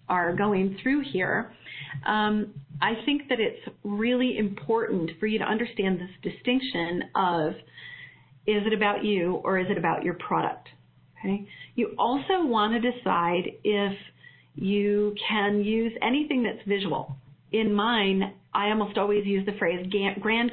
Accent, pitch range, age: American, 190-225 Hz, 40-59